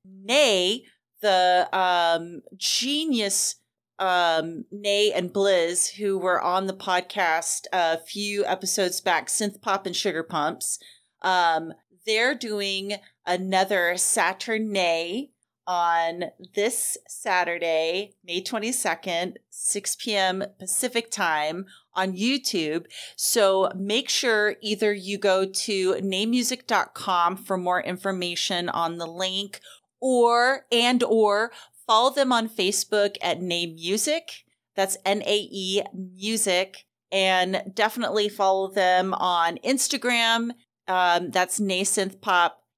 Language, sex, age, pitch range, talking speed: English, female, 30-49, 185-225 Hz, 110 wpm